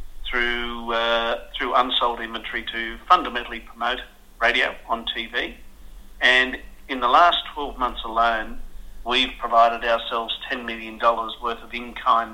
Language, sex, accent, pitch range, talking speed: English, male, Australian, 115-125 Hz, 125 wpm